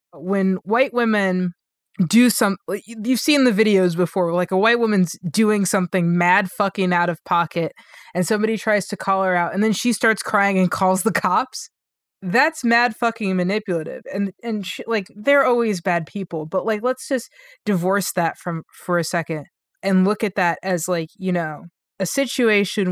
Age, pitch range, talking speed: 20-39, 175-215 Hz, 180 wpm